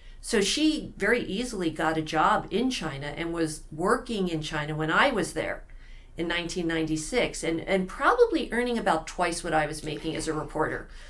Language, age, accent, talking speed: English, 50-69, American, 180 wpm